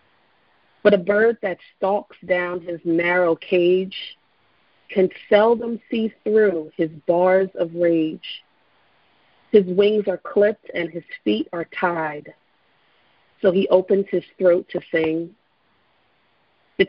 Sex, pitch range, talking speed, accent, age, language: female, 170-205 Hz, 120 wpm, American, 40-59, English